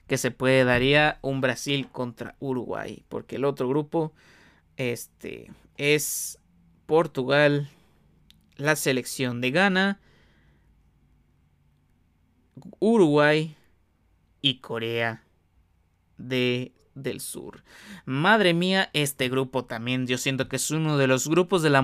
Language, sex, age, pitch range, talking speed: Spanish, male, 30-49, 120-145 Hz, 110 wpm